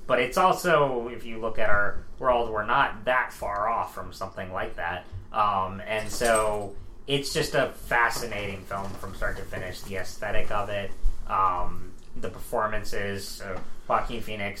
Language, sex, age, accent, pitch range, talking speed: English, male, 20-39, American, 95-115 Hz, 165 wpm